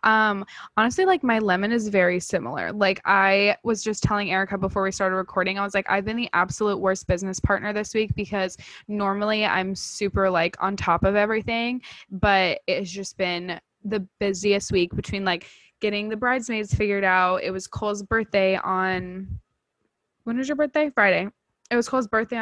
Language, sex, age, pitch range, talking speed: English, female, 10-29, 185-210 Hz, 180 wpm